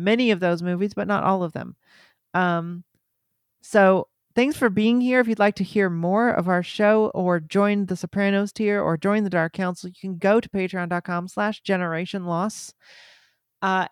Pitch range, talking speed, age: 175-205 Hz, 185 wpm, 40-59